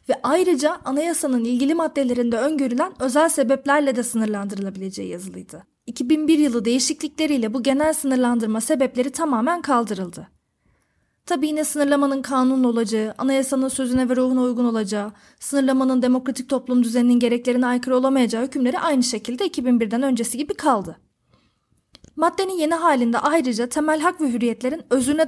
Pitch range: 245-295 Hz